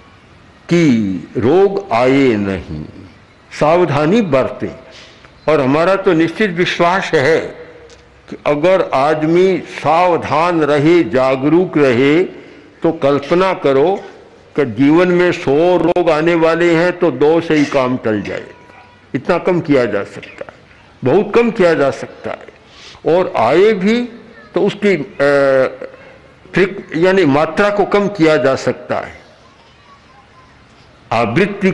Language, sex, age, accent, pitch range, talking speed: Hindi, male, 60-79, native, 130-185 Hz, 120 wpm